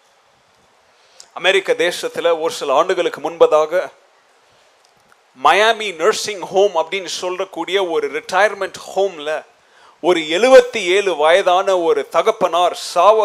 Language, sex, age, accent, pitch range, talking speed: Tamil, male, 30-49, native, 185-265 Hz, 95 wpm